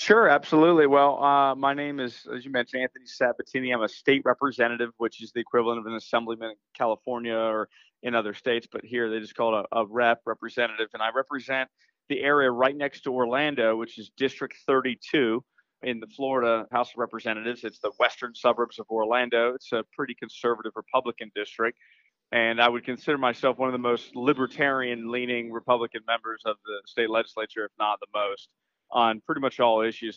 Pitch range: 115-135 Hz